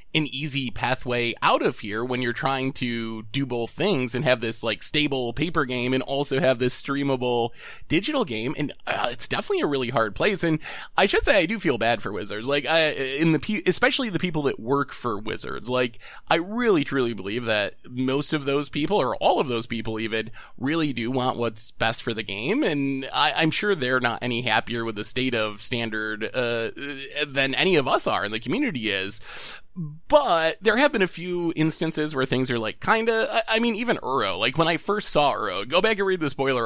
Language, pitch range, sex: English, 120-165 Hz, male